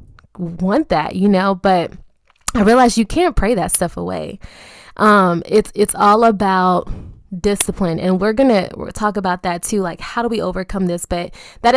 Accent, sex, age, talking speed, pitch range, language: American, female, 20-39, 180 wpm, 185-225 Hz, English